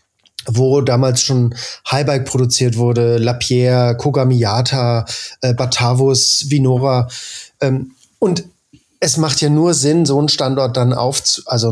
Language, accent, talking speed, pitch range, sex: German, German, 125 wpm, 125-145 Hz, male